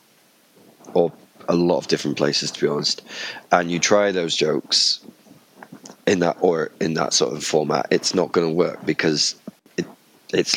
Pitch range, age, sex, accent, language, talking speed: 85-100 Hz, 20-39, male, British, English, 170 wpm